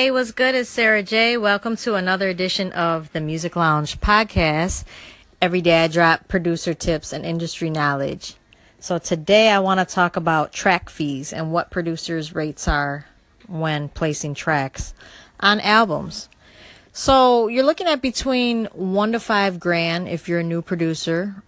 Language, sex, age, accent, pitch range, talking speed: English, female, 30-49, American, 165-200 Hz, 160 wpm